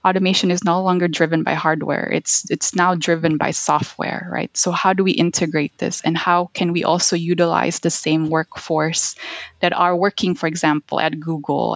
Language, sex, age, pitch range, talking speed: English, female, 20-39, 160-185 Hz, 185 wpm